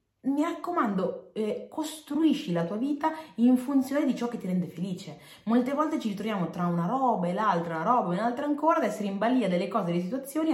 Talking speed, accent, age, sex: 210 wpm, native, 30-49, female